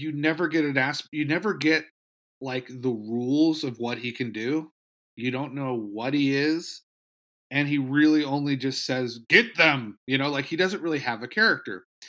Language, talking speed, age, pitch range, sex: English, 195 wpm, 30-49, 115-150 Hz, male